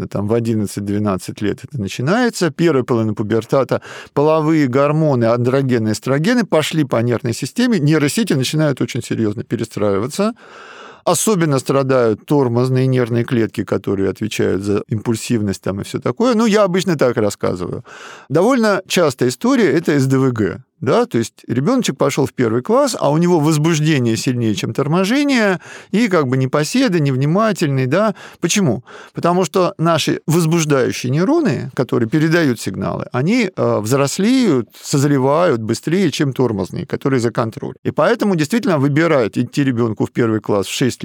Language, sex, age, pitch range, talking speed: Russian, male, 50-69, 115-175 Hz, 140 wpm